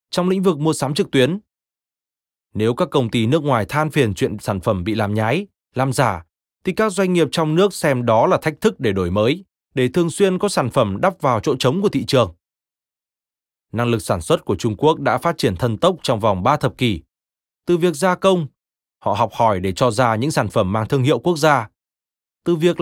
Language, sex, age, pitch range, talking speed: Vietnamese, male, 20-39, 110-170 Hz, 230 wpm